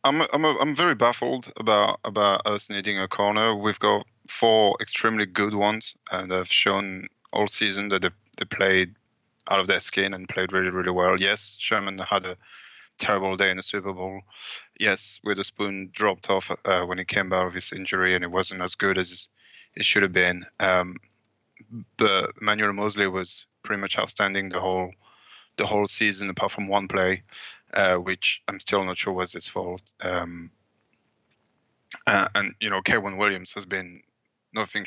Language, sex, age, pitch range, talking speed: English, male, 20-39, 95-105 Hz, 180 wpm